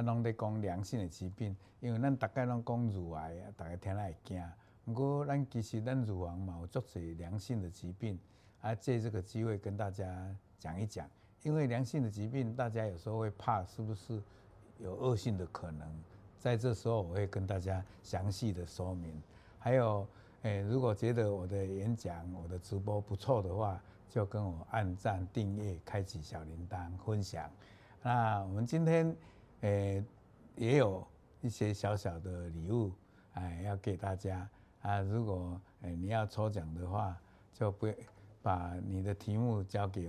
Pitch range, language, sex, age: 95-115 Hz, Chinese, male, 60-79